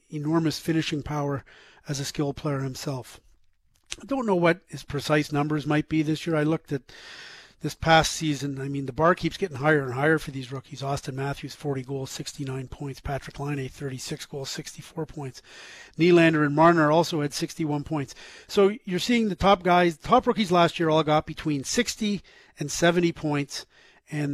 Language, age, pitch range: English, 40-59, 140-165 Hz